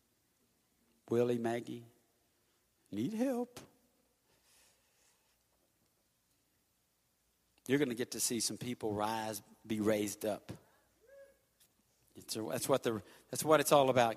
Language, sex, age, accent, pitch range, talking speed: English, male, 50-69, American, 110-150 Hz, 95 wpm